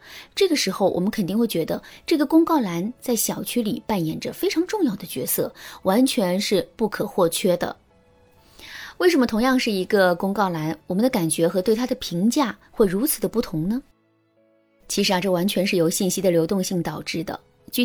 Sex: female